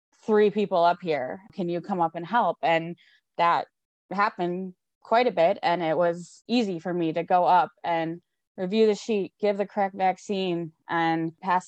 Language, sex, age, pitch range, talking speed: English, female, 20-39, 170-200 Hz, 180 wpm